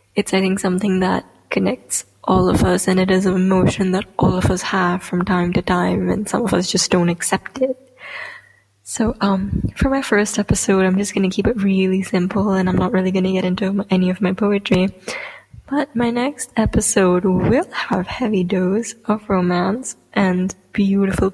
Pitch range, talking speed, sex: 180-205 Hz, 195 wpm, female